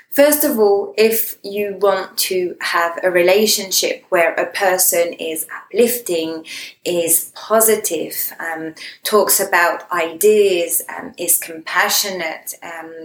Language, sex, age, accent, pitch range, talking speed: English, female, 20-39, British, 185-240 Hz, 115 wpm